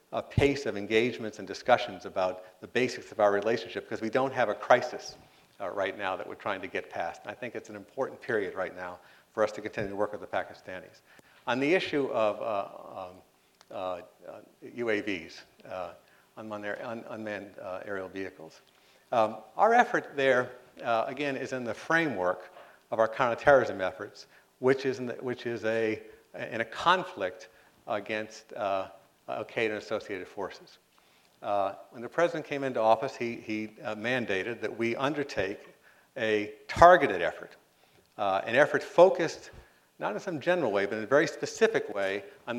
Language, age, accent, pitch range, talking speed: English, 50-69, American, 105-140 Hz, 175 wpm